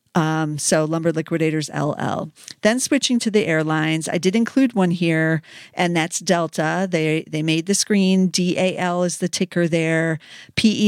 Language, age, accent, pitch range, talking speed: English, 50-69, American, 160-185 Hz, 160 wpm